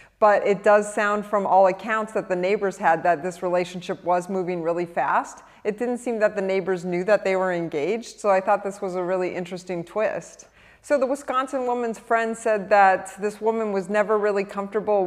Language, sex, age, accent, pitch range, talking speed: English, female, 30-49, American, 175-205 Hz, 205 wpm